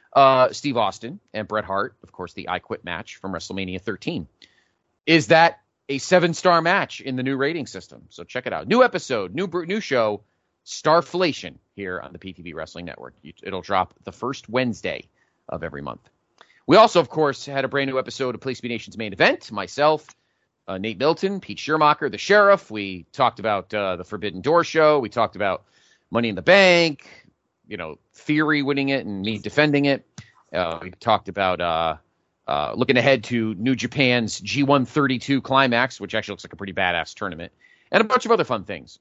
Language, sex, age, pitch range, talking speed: English, male, 30-49, 100-150 Hz, 190 wpm